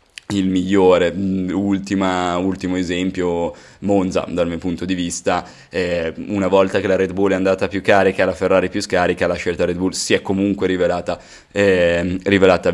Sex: male